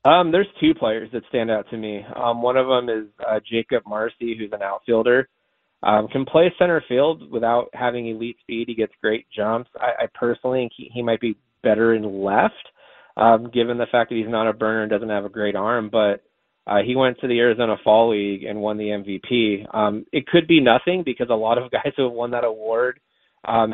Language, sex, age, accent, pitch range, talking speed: English, male, 20-39, American, 105-120 Hz, 220 wpm